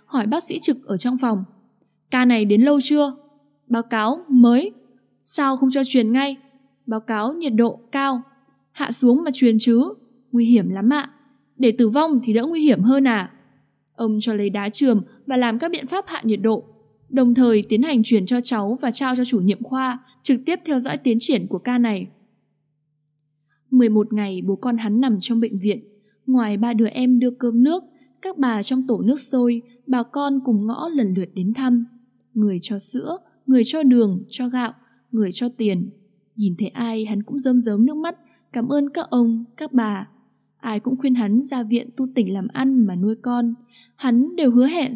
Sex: female